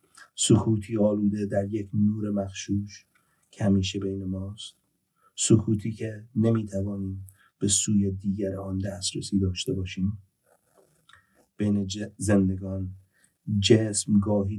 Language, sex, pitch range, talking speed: English, male, 95-105 Hz, 100 wpm